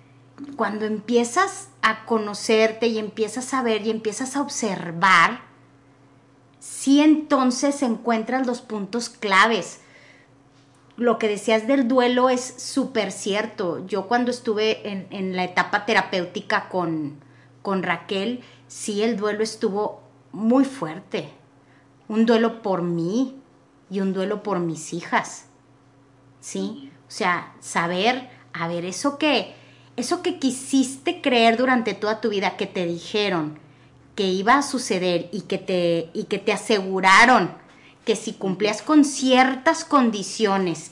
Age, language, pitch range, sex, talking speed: 30-49, Spanish, 170-235 Hz, female, 130 wpm